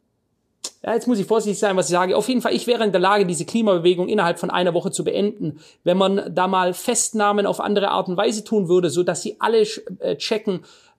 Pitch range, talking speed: 175-215 Hz, 230 wpm